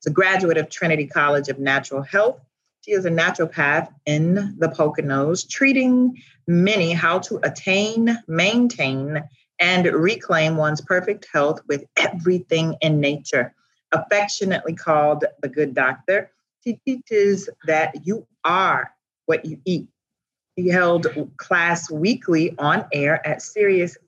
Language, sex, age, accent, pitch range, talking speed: English, female, 30-49, American, 150-185 Hz, 125 wpm